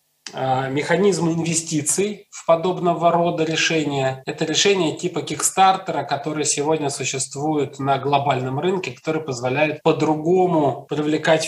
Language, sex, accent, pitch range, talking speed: Russian, male, native, 140-165 Hz, 110 wpm